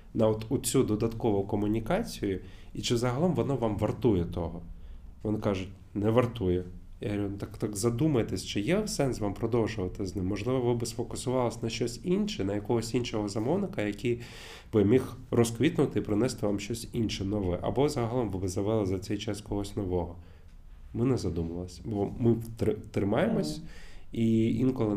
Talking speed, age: 160 wpm, 20-39